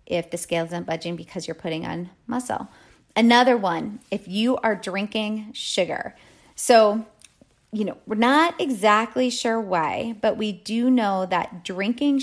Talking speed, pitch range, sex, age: 150 wpm, 180-225 Hz, female, 30-49